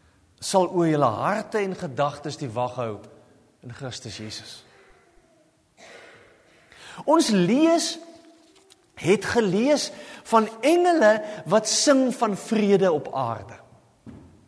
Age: 40-59